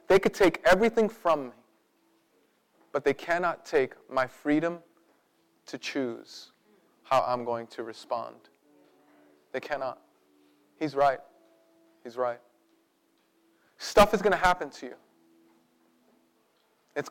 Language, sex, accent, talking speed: English, male, American, 115 wpm